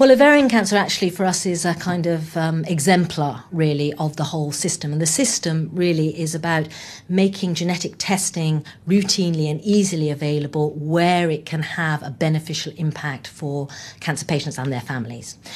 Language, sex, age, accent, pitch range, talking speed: English, female, 40-59, British, 150-180 Hz, 165 wpm